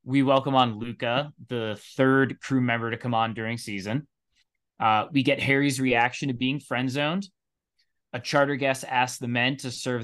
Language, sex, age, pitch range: English, male, 20-39, 110-130 Hz